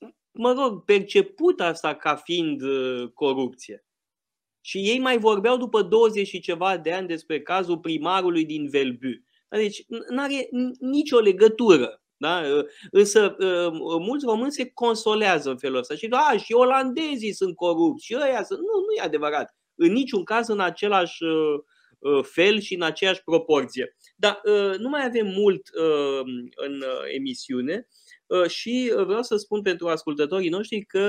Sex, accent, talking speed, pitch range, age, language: male, native, 155 wpm, 155-255 Hz, 20-39, Romanian